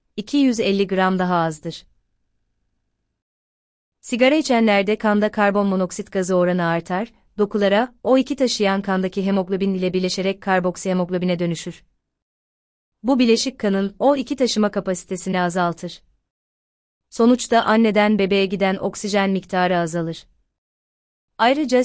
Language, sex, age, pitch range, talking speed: Turkish, female, 30-49, 175-215 Hz, 100 wpm